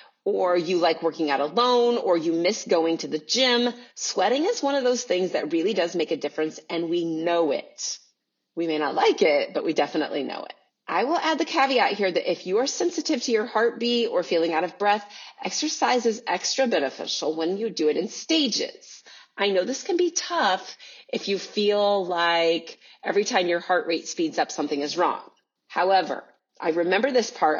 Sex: female